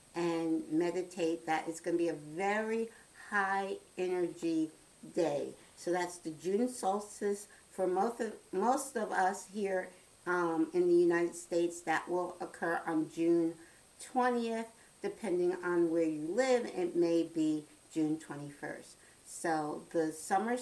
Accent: American